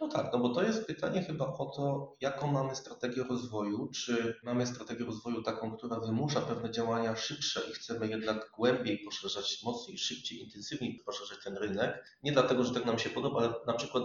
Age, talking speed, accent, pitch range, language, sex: 30-49, 190 wpm, native, 115-125 Hz, Polish, male